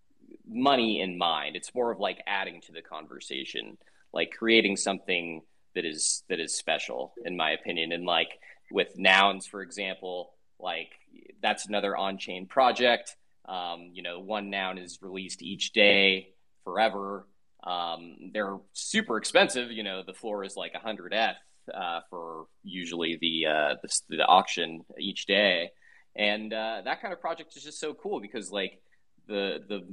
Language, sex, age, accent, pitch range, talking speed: English, male, 20-39, American, 90-110 Hz, 160 wpm